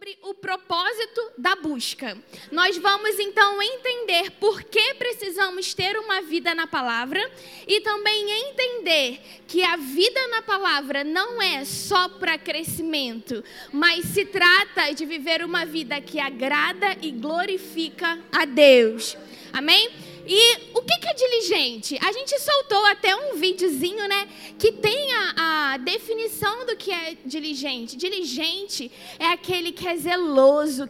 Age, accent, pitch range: 10-29, Brazilian, 315-400 Hz